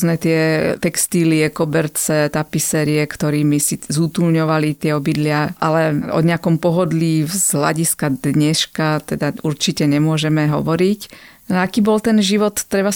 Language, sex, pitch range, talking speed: Slovak, female, 155-175 Hz, 125 wpm